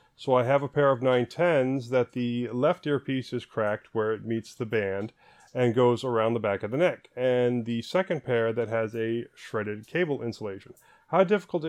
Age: 30-49